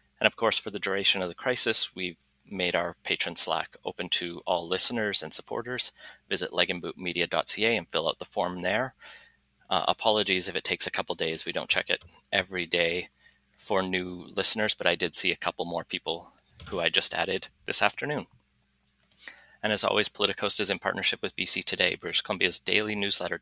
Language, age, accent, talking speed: English, 30-49, American, 185 wpm